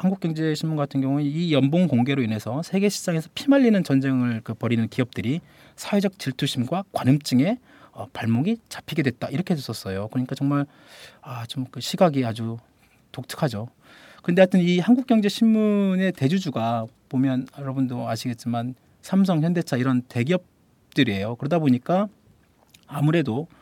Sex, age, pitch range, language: male, 40-59, 120-160 Hz, Korean